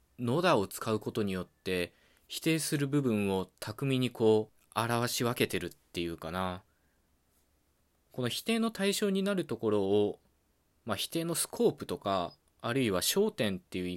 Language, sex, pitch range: Japanese, male, 85-125 Hz